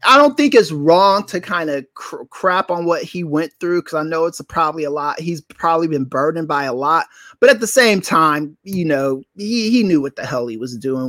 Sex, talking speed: male, 250 wpm